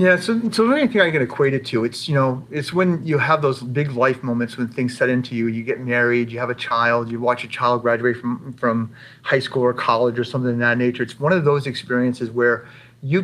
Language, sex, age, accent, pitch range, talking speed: English, male, 40-59, American, 120-145 Hz, 260 wpm